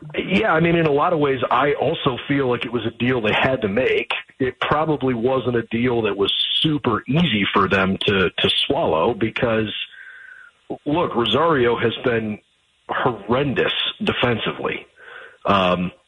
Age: 40-59